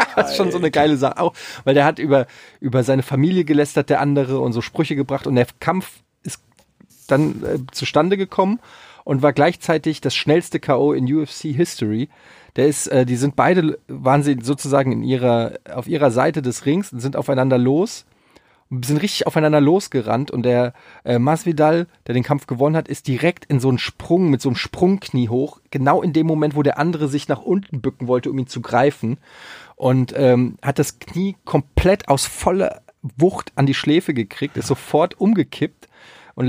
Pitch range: 130-160 Hz